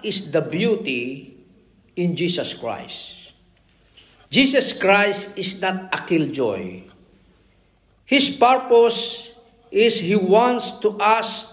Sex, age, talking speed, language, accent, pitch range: male, 50-69, 100 wpm, Filipino, native, 180-260 Hz